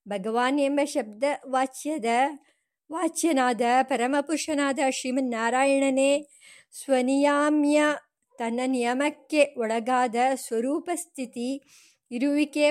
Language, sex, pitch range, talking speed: English, male, 235-280 Hz, 85 wpm